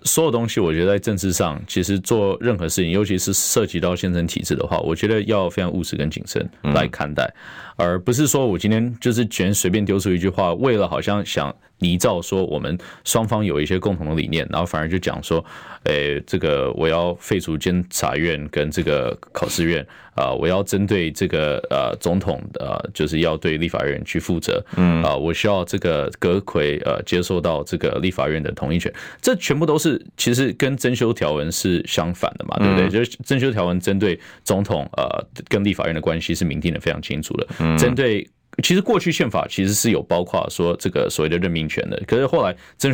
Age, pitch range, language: 20-39, 85-125 Hz, Chinese